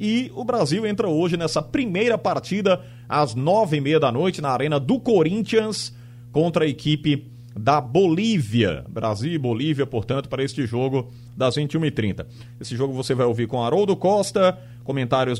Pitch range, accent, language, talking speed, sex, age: 120-175 Hz, Brazilian, Portuguese, 160 wpm, male, 40-59